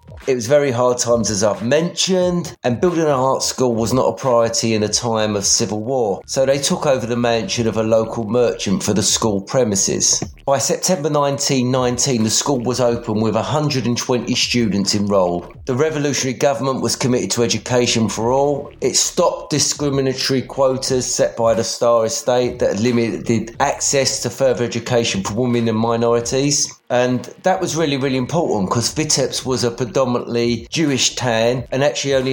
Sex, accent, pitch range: male, British, 115-140 Hz